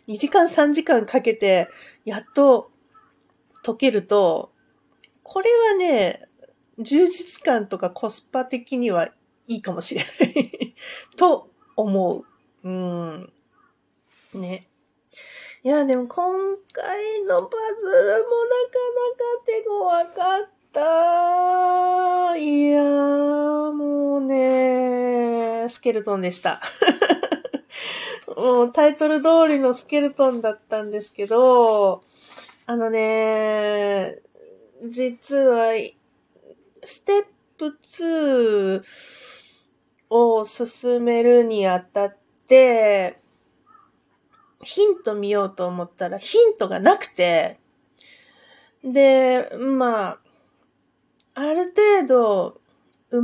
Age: 30-49